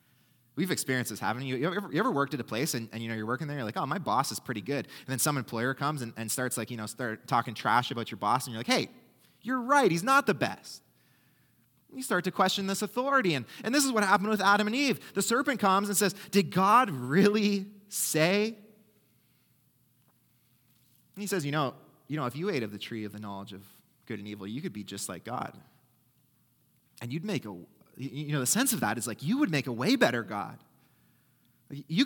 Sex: male